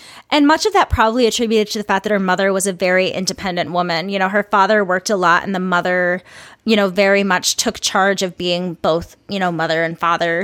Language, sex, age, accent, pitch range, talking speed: English, female, 20-39, American, 180-230 Hz, 235 wpm